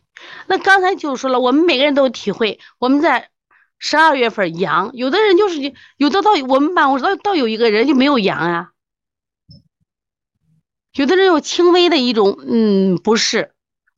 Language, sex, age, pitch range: Chinese, female, 30-49, 180-295 Hz